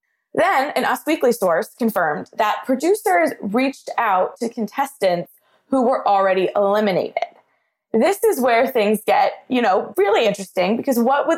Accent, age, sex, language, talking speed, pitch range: American, 20-39, female, English, 150 wpm, 195-255 Hz